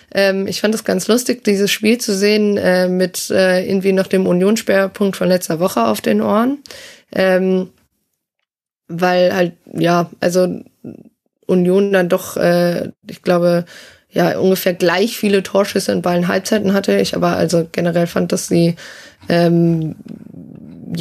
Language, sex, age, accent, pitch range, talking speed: German, female, 20-39, German, 180-210 Hz, 145 wpm